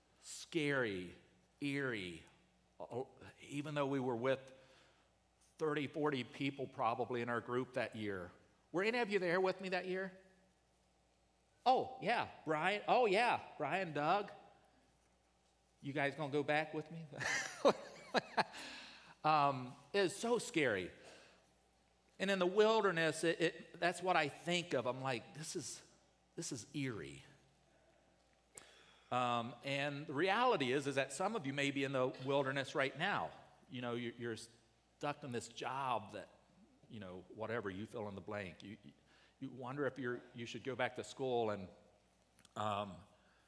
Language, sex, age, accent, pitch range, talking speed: English, male, 40-59, American, 110-145 Hz, 150 wpm